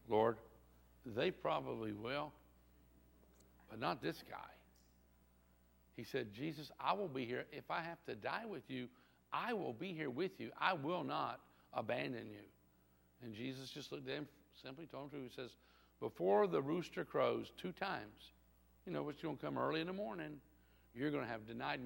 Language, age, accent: English, 60-79, American